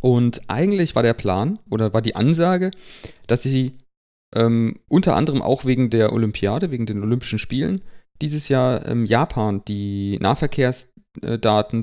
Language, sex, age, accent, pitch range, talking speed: German, male, 30-49, German, 105-130 Hz, 140 wpm